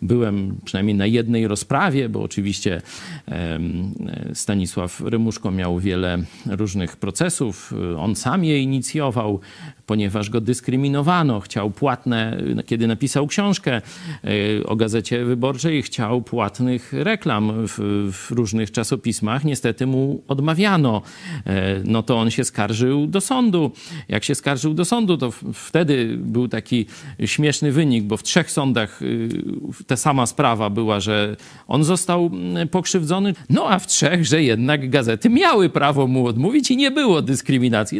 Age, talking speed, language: 40-59, 130 wpm, Polish